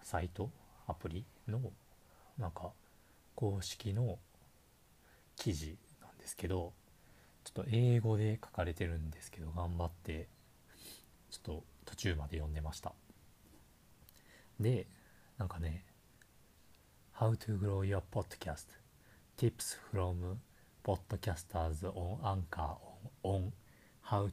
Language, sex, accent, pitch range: Japanese, male, native, 80-100 Hz